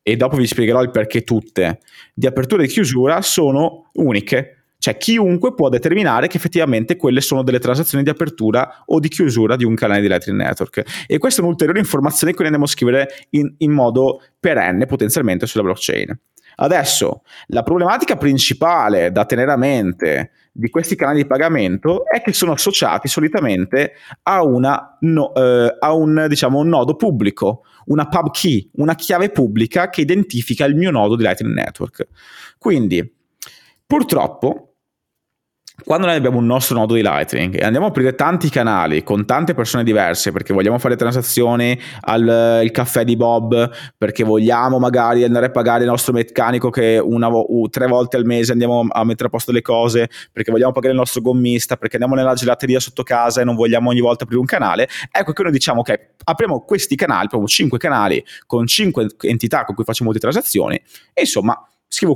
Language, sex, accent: Italian, male, native